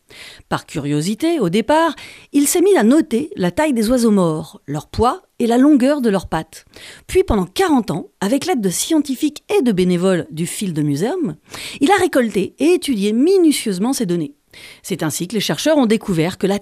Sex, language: female, French